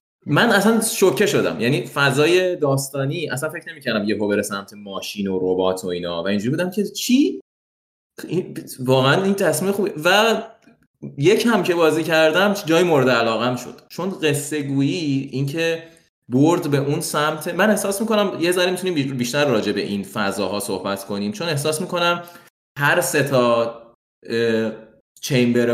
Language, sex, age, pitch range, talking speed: Persian, male, 20-39, 120-155 Hz, 160 wpm